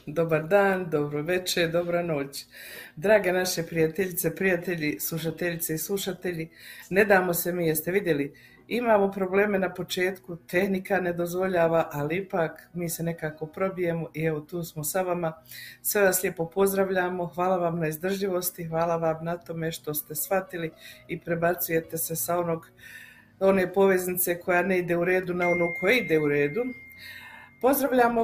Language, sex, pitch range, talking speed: Croatian, female, 165-200 Hz, 155 wpm